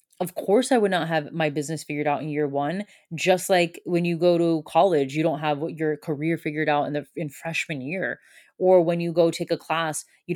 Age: 20-39